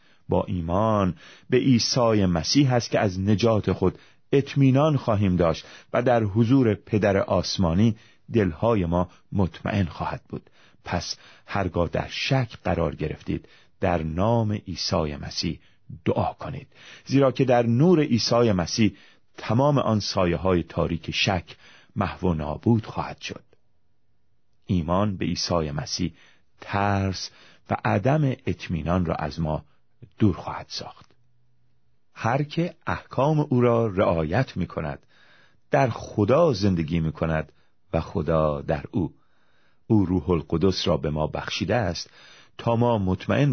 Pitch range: 85-120 Hz